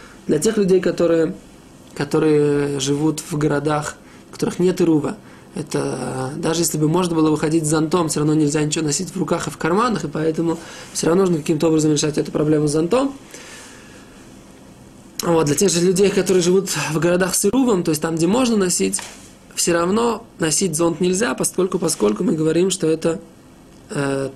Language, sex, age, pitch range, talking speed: Russian, male, 20-39, 150-175 Hz, 175 wpm